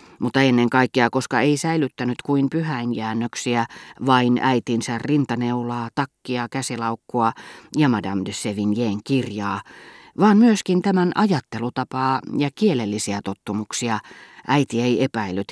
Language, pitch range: Finnish, 115-140 Hz